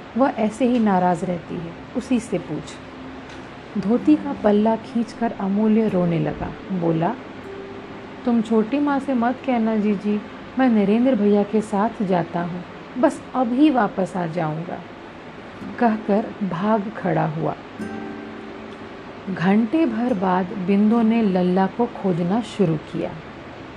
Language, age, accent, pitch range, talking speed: Hindi, 50-69, native, 185-245 Hz, 135 wpm